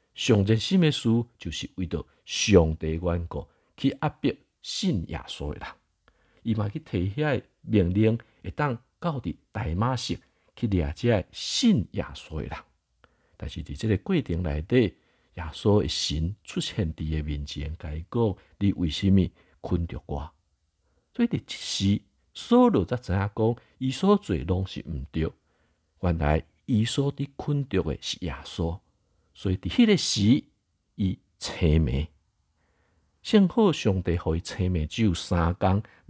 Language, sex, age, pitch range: Chinese, male, 50-69, 80-120 Hz